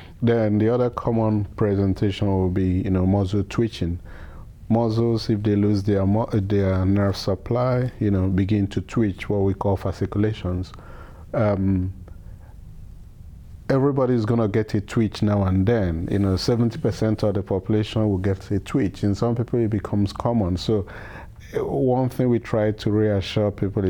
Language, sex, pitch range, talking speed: English, male, 95-115 Hz, 155 wpm